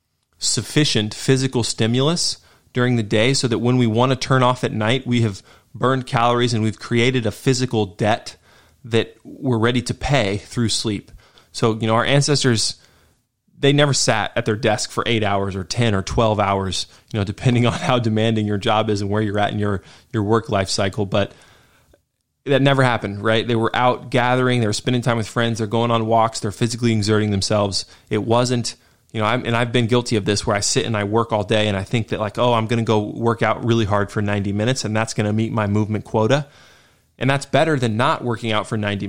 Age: 20-39